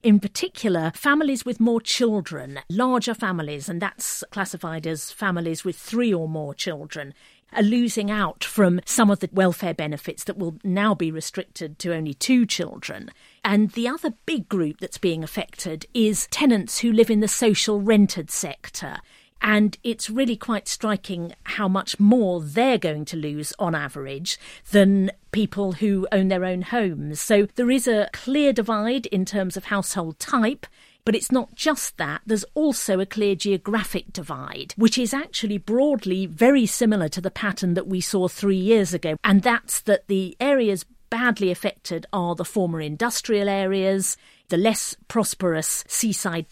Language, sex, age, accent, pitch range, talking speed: English, female, 50-69, British, 180-230 Hz, 165 wpm